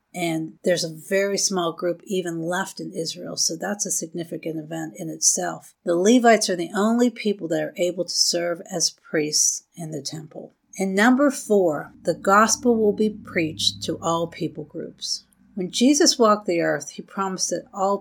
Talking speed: 180 wpm